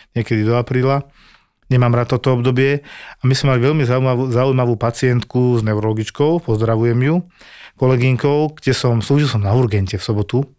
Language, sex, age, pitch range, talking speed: Slovak, male, 40-59, 115-145 Hz, 160 wpm